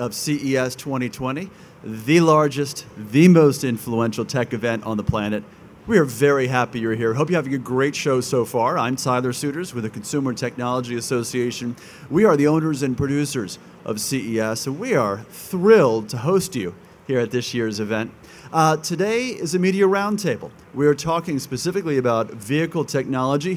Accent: American